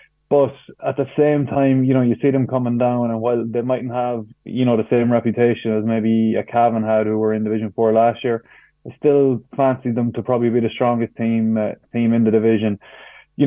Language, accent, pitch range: English, Irish, 115-125 Hz